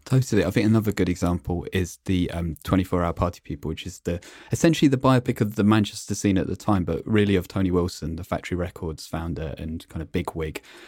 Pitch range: 85-105 Hz